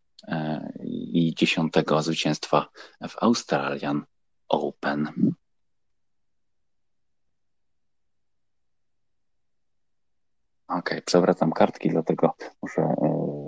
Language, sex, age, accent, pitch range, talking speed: Polish, male, 30-49, native, 75-95 Hz, 50 wpm